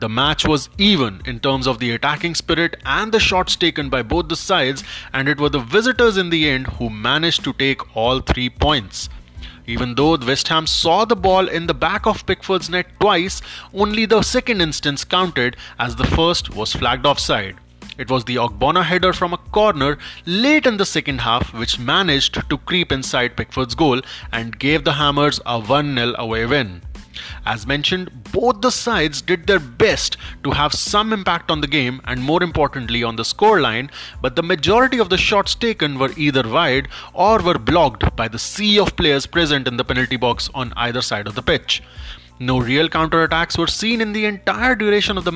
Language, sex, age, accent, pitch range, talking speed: English, male, 20-39, Indian, 125-185 Hz, 195 wpm